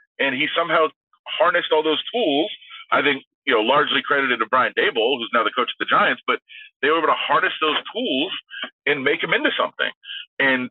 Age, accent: 30-49, American